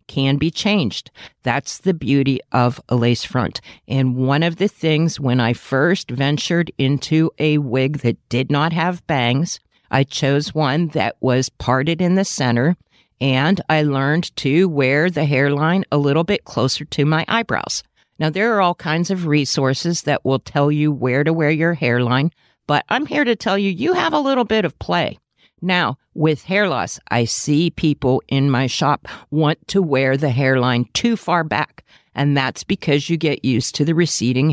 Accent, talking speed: American, 185 wpm